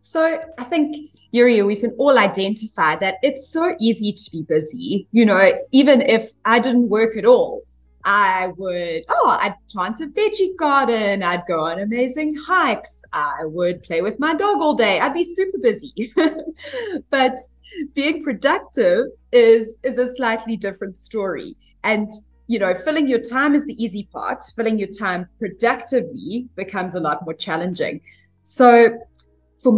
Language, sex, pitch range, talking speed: English, female, 185-260 Hz, 160 wpm